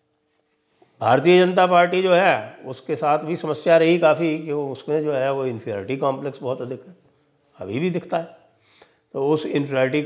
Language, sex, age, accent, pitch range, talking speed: English, male, 60-79, Indian, 125-170 Hz, 165 wpm